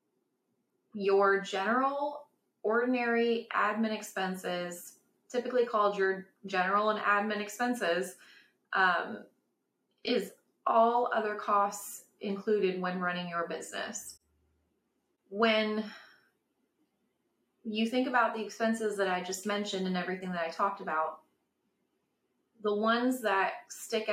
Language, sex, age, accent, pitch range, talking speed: English, female, 30-49, American, 180-215 Hz, 105 wpm